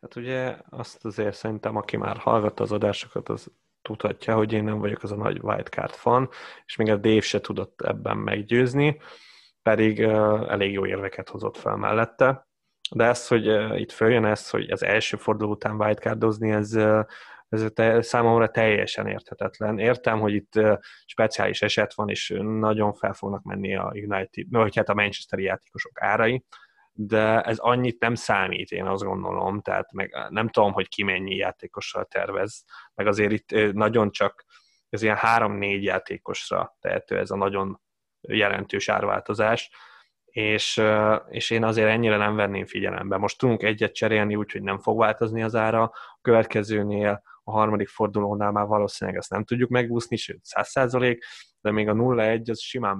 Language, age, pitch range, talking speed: Hungarian, 20-39, 105-115 Hz, 160 wpm